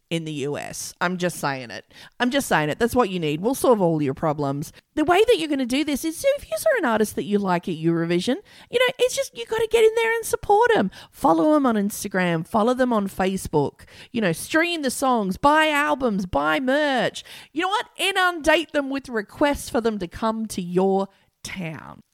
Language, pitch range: English, 165-275 Hz